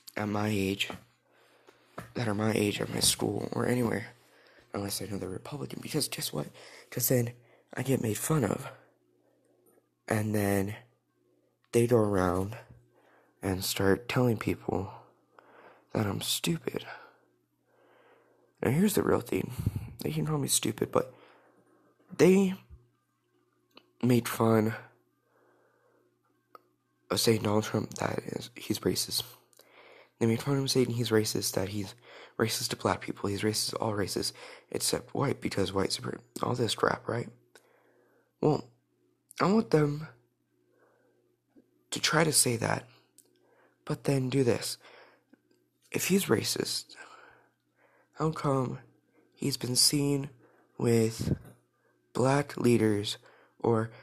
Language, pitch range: English, 90-130 Hz